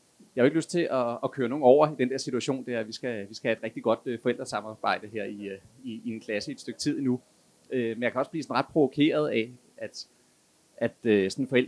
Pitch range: 110-145 Hz